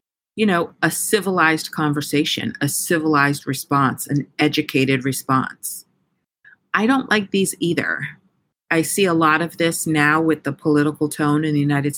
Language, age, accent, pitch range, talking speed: English, 40-59, American, 145-180 Hz, 150 wpm